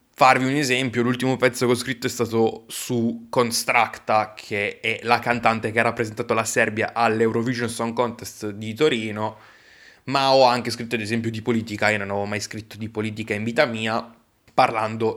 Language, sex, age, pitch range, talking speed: Italian, male, 20-39, 110-125 Hz, 180 wpm